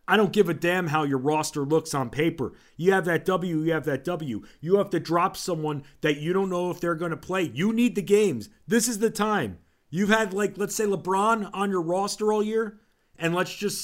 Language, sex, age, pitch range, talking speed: English, male, 40-59, 155-220 Hz, 240 wpm